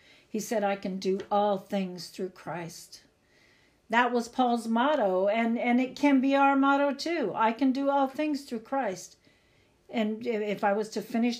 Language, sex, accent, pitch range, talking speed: English, female, American, 205-260 Hz, 180 wpm